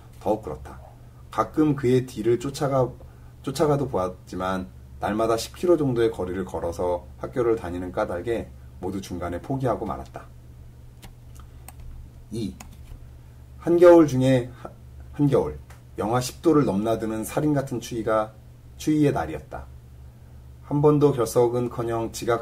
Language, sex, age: Korean, male, 30-49